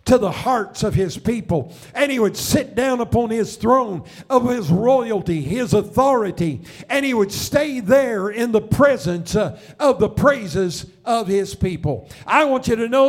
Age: 50-69